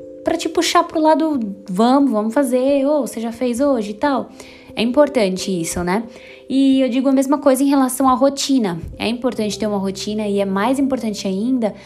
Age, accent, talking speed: 10-29, Brazilian, 195 wpm